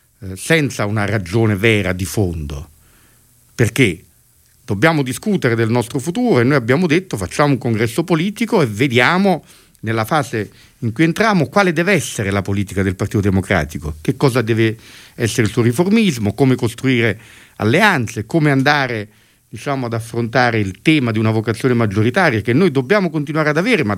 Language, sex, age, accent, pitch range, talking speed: Italian, male, 50-69, native, 105-145 Hz, 160 wpm